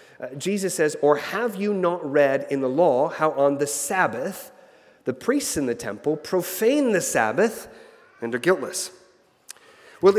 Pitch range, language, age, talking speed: 145-205 Hz, English, 30-49, 160 wpm